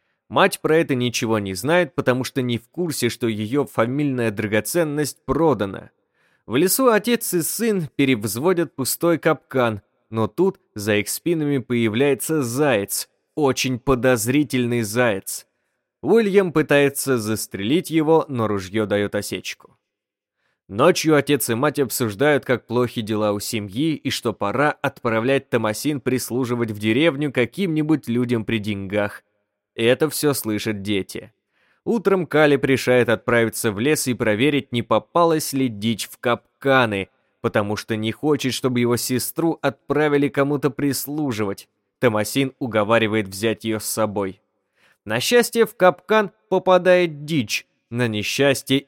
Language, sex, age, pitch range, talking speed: Russian, male, 20-39, 110-150 Hz, 130 wpm